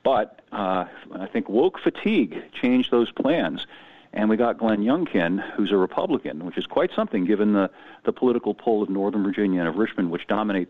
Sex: male